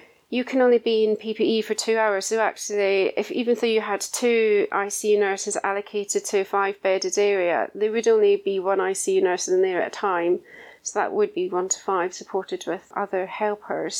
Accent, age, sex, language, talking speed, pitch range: British, 30-49, female, English, 205 wpm, 200-280 Hz